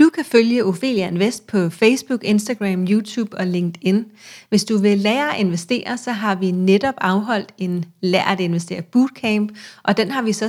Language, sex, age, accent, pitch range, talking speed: Danish, female, 30-49, native, 190-235 Hz, 185 wpm